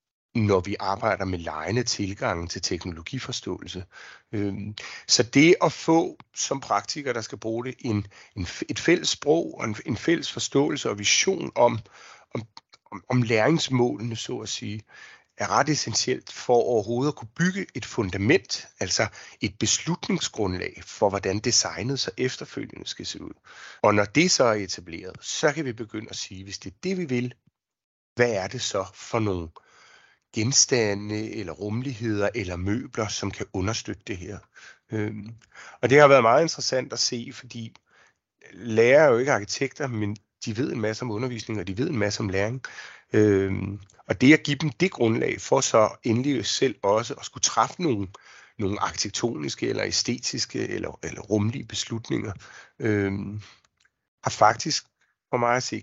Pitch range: 100-125 Hz